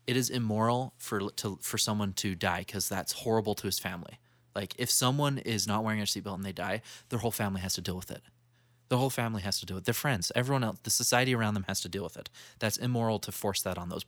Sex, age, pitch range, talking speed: male, 20-39, 100-120 Hz, 265 wpm